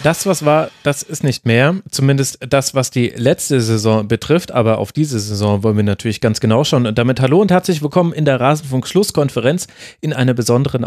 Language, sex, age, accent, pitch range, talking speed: German, male, 30-49, German, 120-155 Hz, 200 wpm